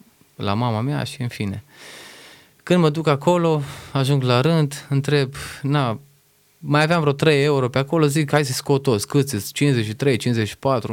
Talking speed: 170 wpm